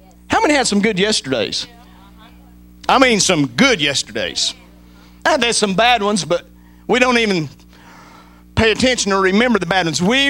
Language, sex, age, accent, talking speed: English, male, 50-69, American, 155 wpm